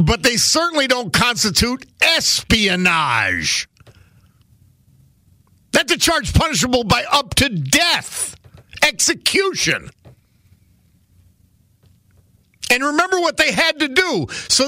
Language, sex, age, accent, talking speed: English, male, 50-69, American, 95 wpm